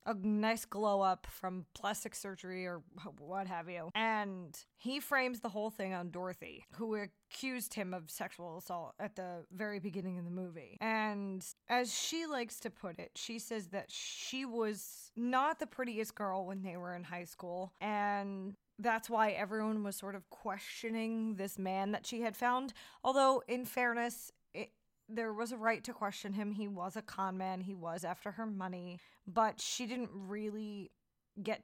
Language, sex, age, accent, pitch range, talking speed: English, female, 20-39, American, 190-235 Hz, 175 wpm